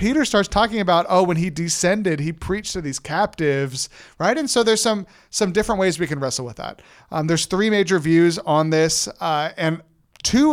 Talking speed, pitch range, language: 205 wpm, 155-190 Hz, English